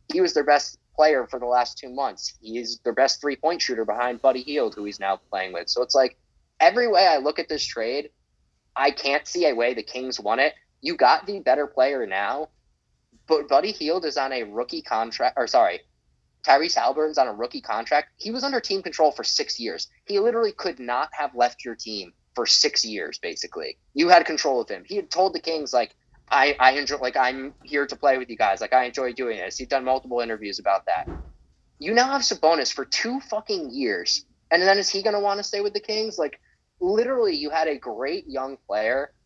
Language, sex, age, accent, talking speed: English, male, 20-39, American, 220 wpm